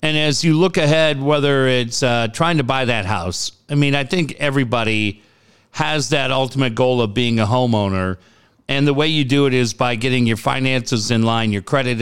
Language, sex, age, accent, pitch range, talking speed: English, male, 50-69, American, 115-135 Hz, 205 wpm